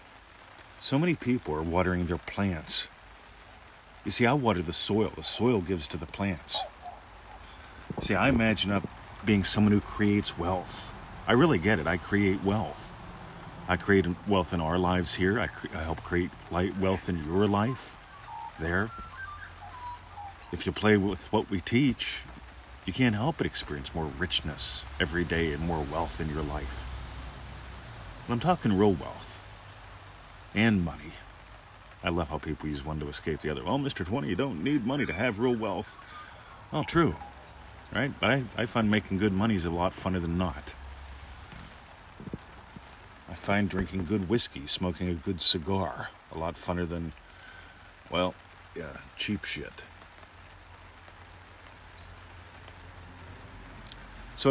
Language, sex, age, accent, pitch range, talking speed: English, male, 40-59, American, 85-105 Hz, 150 wpm